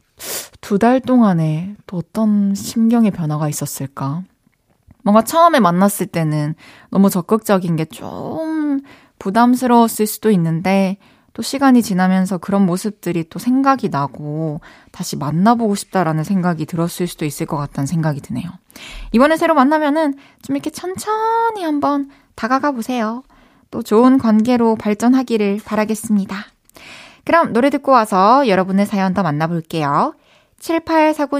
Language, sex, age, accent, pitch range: Korean, female, 20-39, native, 190-285 Hz